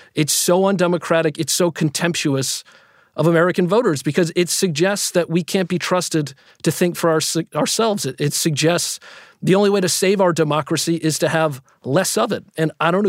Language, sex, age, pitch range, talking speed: English, male, 40-59, 150-190 Hz, 185 wpm